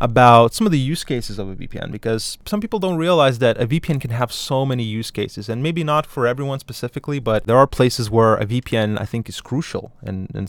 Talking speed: 240 wpm